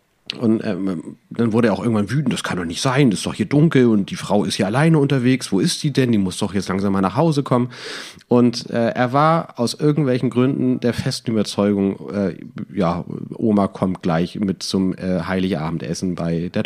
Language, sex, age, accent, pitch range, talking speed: German, male, 40-59, German, 105-140 Hz, 215 wpm